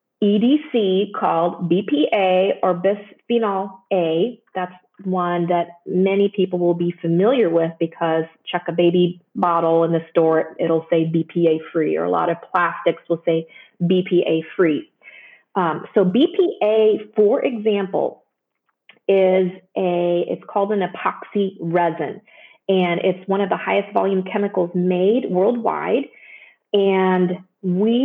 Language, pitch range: English, 175-210 Hz